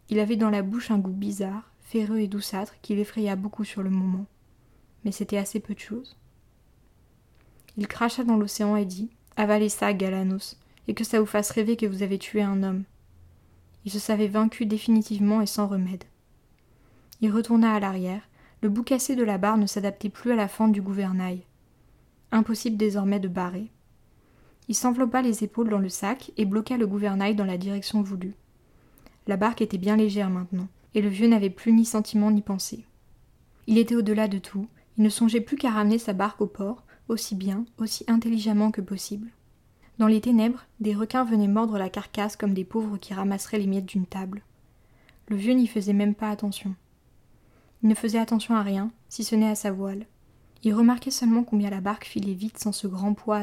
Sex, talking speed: female, 200 wpm